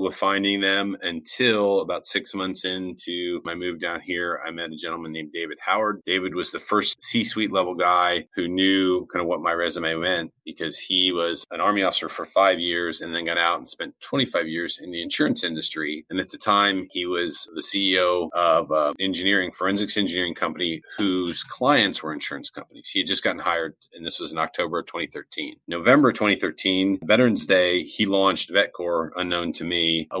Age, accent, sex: 30-49, American, male